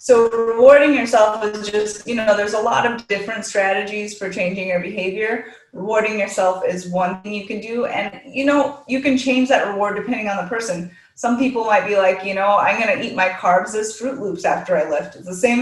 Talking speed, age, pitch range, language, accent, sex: 225 wpm, 30-49, 180-235 Hz, English, American, female